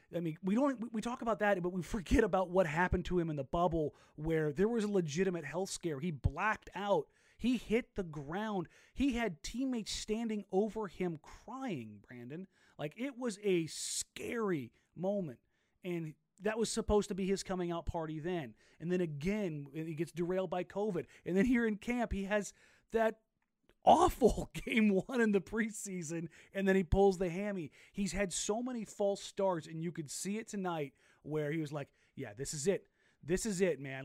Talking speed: 195 wpm